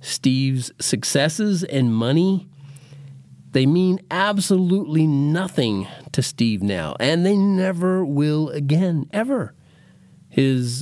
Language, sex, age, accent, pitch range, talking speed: English, male, 40-59, American, 125-155 Hz, 100 wpm